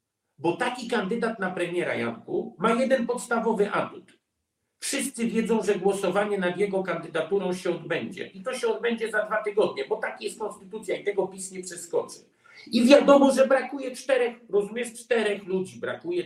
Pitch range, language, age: 195-255 Hz, Polish, 50-69